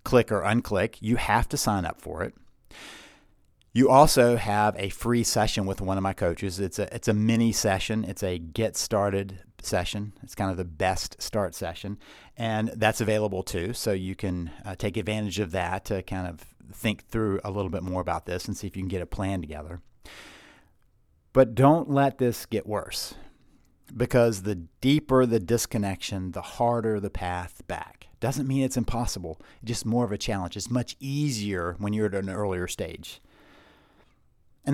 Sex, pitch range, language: male, 95-125 Hz, English